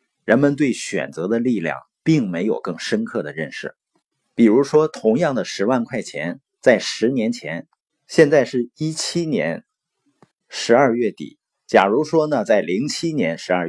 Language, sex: Chinese, male